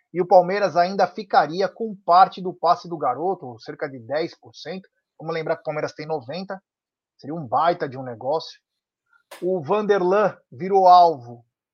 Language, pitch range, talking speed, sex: Portuguese, 165-200 Hz, 160 wpm, male